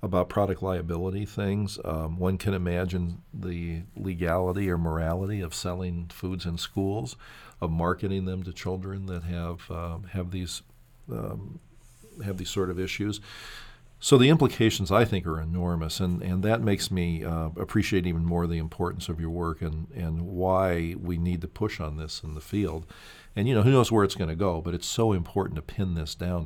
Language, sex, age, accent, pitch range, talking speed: English, male, 50-69, American, 85-100 Hz, 190 wpm